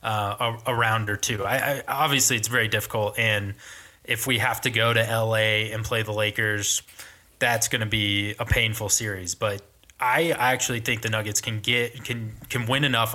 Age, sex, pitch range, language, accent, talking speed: 20-39, male, 105-120 Hz, English, American, 185 wpm